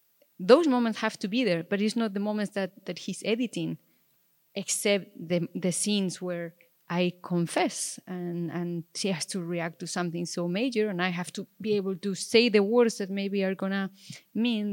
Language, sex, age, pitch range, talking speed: English, female, 30-49, 185-225 Hz, 195 wpm